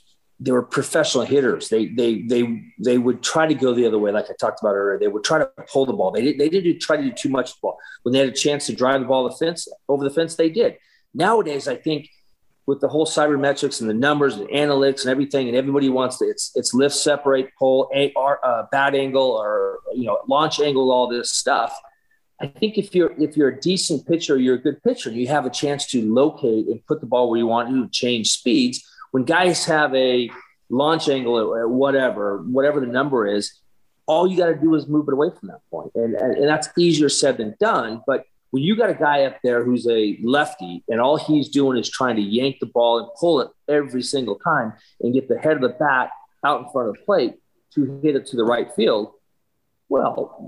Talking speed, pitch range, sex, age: 230 wpm, 125-160 Hz, male, 40-59